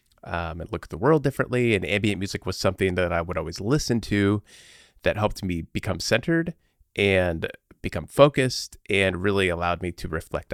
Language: English